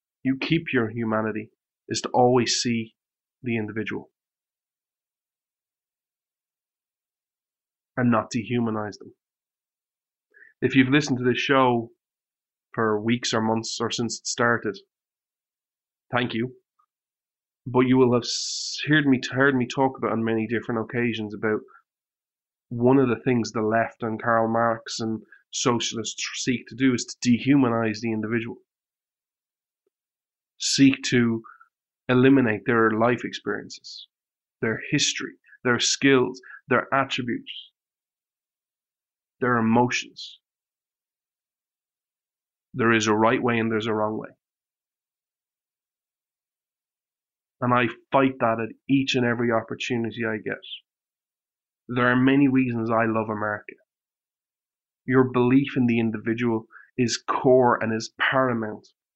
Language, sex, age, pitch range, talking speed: English, male, 30-49, 110-130 Hz, 120 wpm